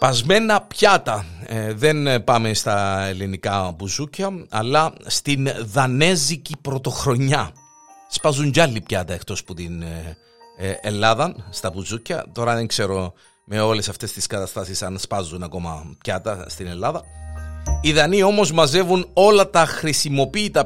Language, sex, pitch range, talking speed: Greek, male, 110-175 Hz, 120 wpm